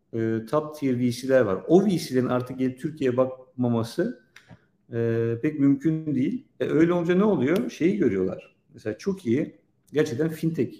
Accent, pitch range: native, 105-130 Hz